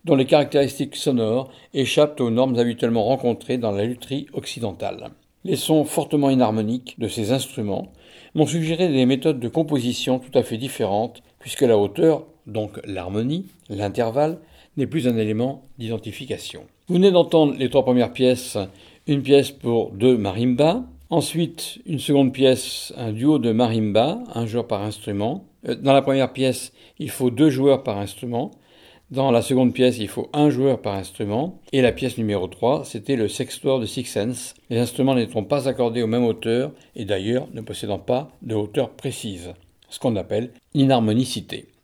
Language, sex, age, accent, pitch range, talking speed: French, male, 50-69, French, 115-140 Hz, 165 wpm